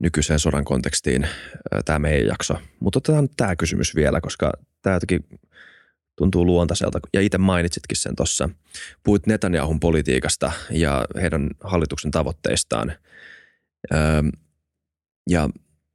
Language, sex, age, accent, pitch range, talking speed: Finnish, male, 20-39, native, 80-100 Hz, 105 wpm